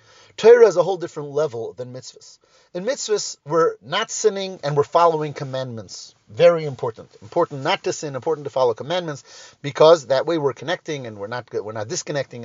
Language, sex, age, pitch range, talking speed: English, male, 30-49, 145-210 Hz, 185 wpm